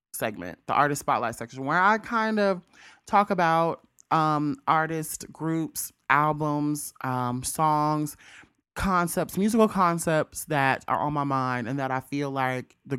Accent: American